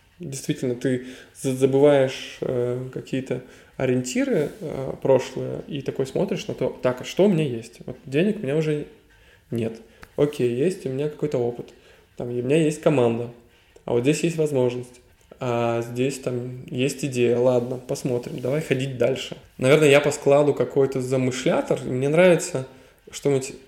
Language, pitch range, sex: Russian, 120-140 Hz, male